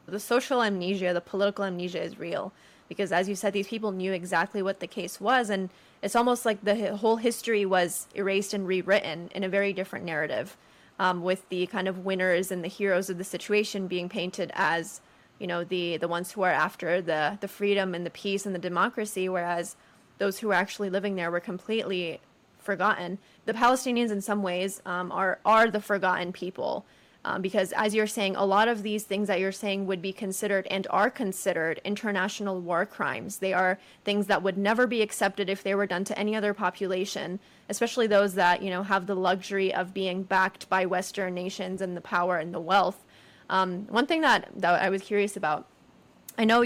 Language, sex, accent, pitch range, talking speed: English, female, American, 185-205 Hz, 205 wpm